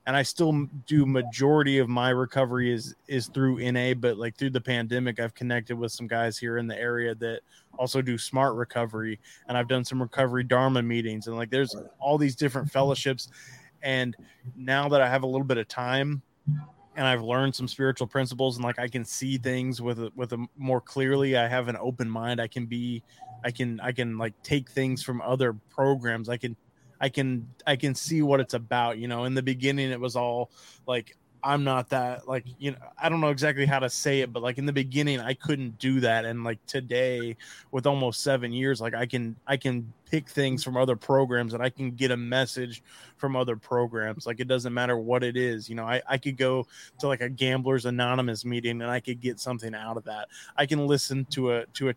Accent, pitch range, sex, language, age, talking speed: American, 120-135 Hz, male, English, 20-39, 225 wpm